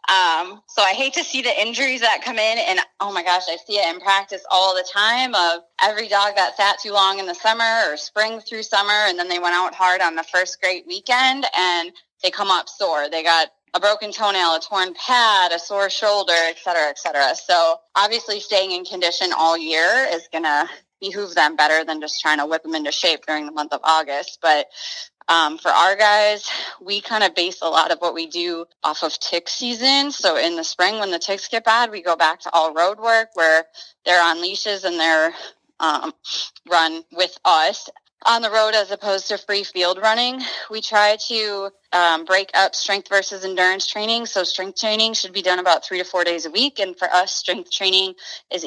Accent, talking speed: American, 215 wpm